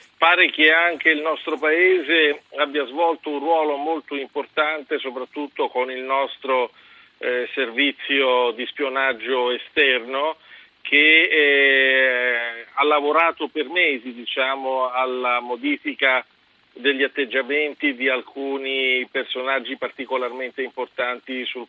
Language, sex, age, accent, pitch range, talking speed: Italian, male, 50-69, native, 130-165 Hz, 100 wpm